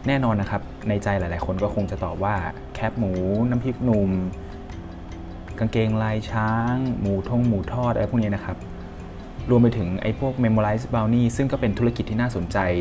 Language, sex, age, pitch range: Thai, male, 20-39, 95-110 Hz